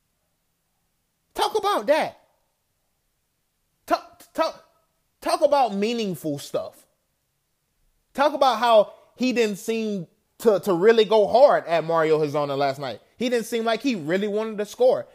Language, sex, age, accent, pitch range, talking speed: English, male, 20-39, American, 165-245 Hz, 135 wpm